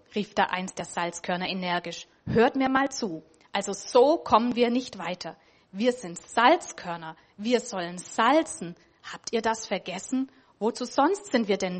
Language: German